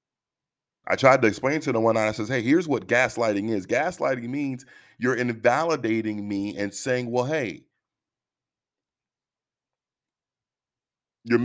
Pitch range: 105-135 Hz